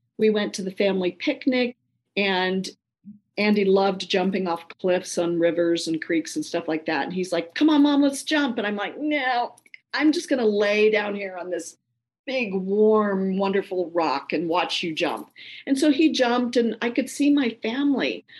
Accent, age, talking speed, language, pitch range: American, 50-69, 190 wpm, English, 190-255 Hz